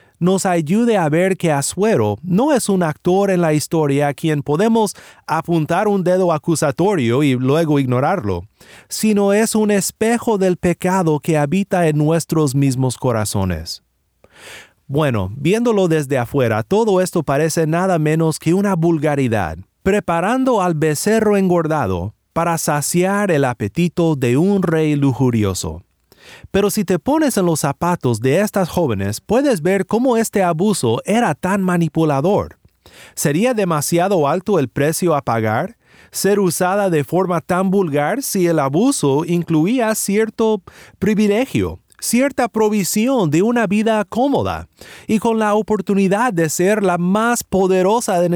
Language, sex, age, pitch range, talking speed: Spanish, male, 30-49, 150-205 Hz, 140 wpm